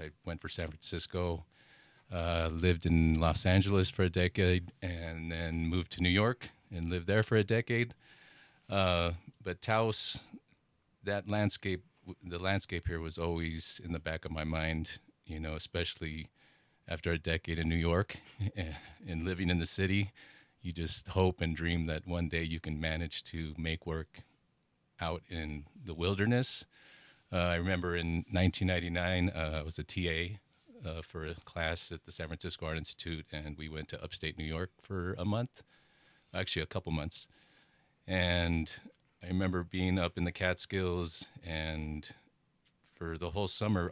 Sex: male